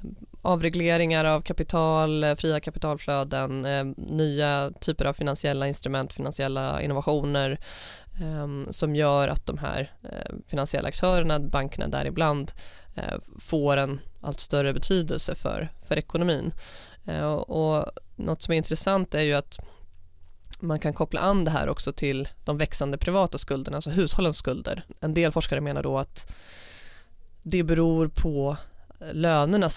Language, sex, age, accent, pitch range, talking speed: Swedish, female, 20-39, native, 140-165 Hz, 125 wpm